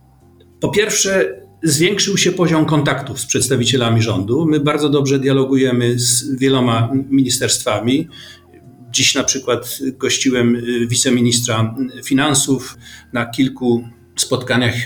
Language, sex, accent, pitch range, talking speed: Polish, male, native, 120-140 Hz, 100 wpm